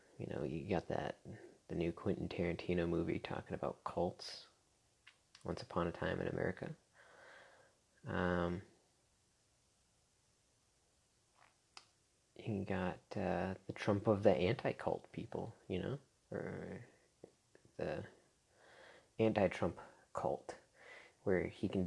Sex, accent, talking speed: male, American, 105 wpm